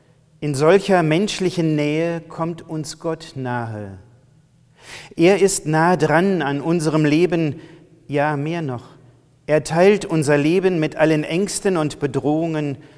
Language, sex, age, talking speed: German, male, 40-59, 125 wpm